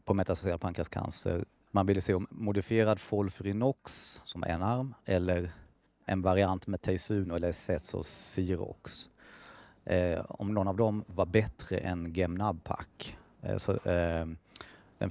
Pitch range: 85-100 Hz